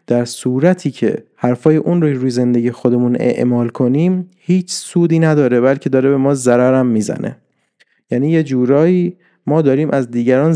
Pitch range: 130-175 Hz